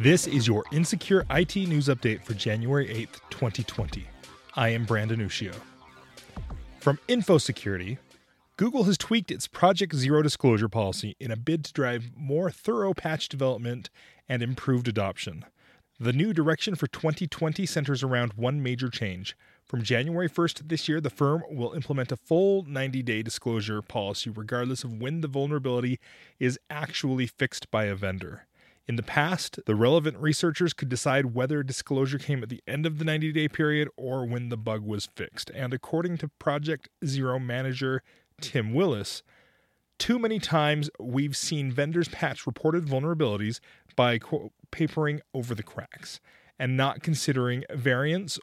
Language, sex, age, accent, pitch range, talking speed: English, male, 30-49, American, 120-155 Hz, 150 wpm